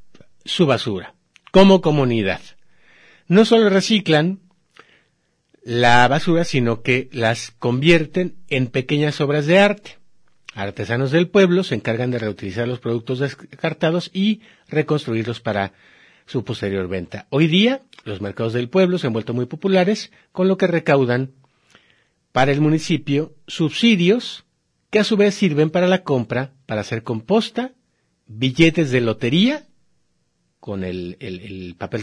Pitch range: 115-175 Hz